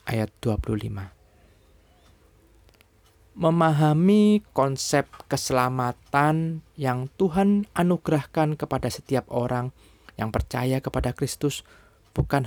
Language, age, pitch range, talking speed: Indonesian, 20-39, 110-145 Hz, 75 wpm